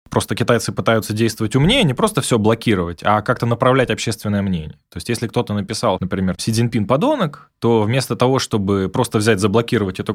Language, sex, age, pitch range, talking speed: Russian, male, 20-39, 105-135 Hz, 185 wpm